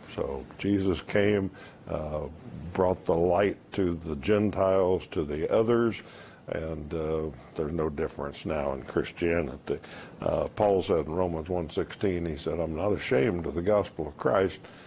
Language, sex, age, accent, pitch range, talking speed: English, male, 60-79, American, 85-100 Hz, 155 wpm